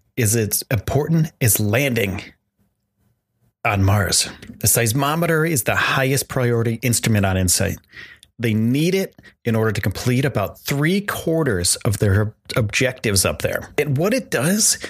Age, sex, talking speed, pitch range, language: 30-49, male, 140 wpm, 105-140 Hz, English